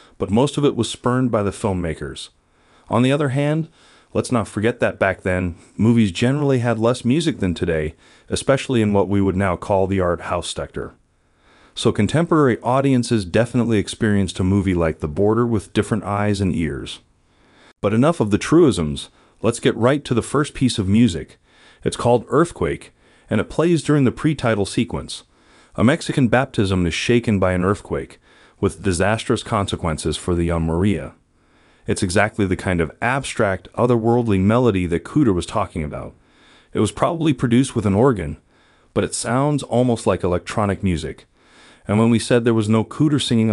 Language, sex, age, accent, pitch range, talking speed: English, male, 40-59, American, 90-120 Hz, 175 wpm